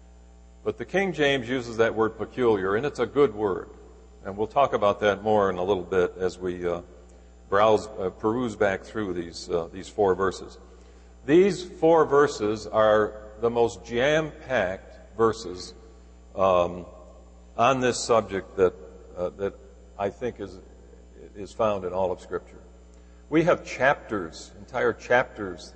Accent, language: American, English